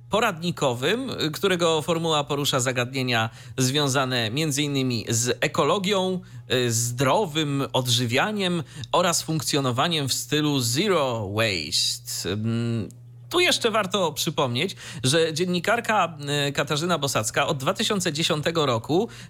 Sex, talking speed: male, 85 wpm